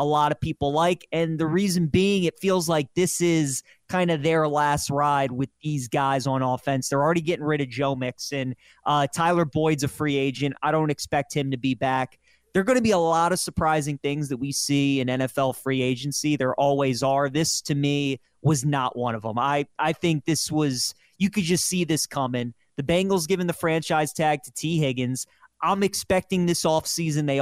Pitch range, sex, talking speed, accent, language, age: 140-165 Hz, male, 210 wpm, American, English, 30-49